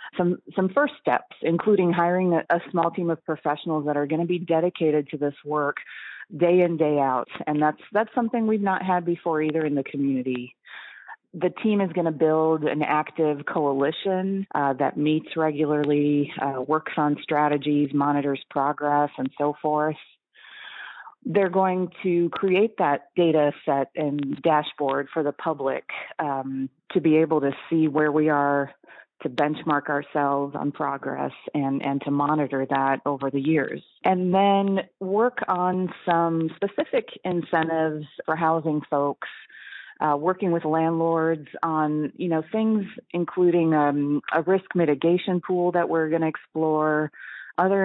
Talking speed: 155 wpm